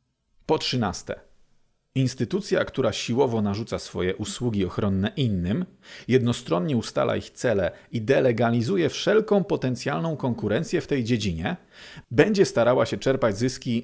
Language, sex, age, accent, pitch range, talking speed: Polish, male, 40-59, native, 105-140 Hz, 115 wpm